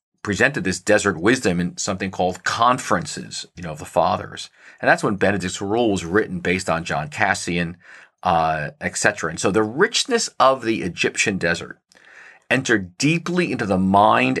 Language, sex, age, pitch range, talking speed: English, male, 40-59, 90-105 Hz, 165 wpm